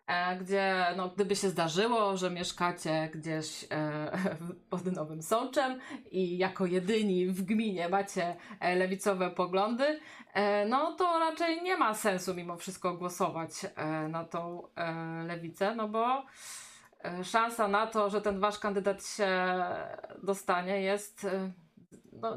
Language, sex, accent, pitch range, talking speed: Polish, female, native, 180-225 Hz, 120 wpm